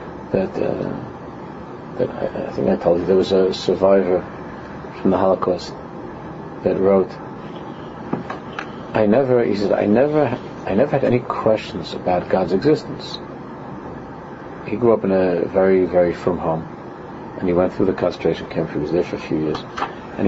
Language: English